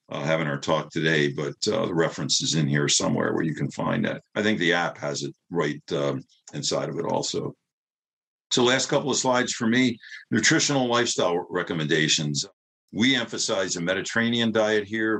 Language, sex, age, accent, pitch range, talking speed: English, male, 50-69, American, 80-105 Hz, 180 wpm